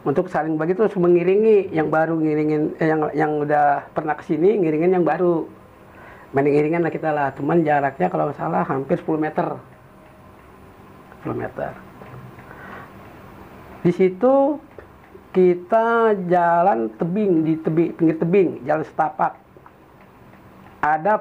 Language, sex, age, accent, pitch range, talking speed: Indonesian, male, 50-69, native, 145-185 Hz, 115 wpm